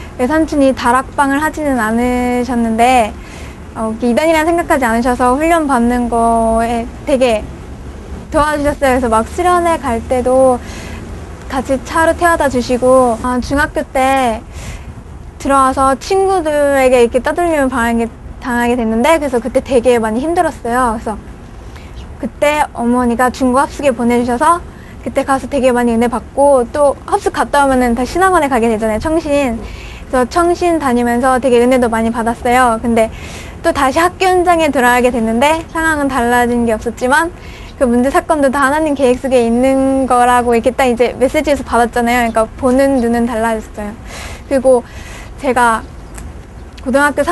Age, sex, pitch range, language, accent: 20-39, female, 240-290 Hz, Korean, native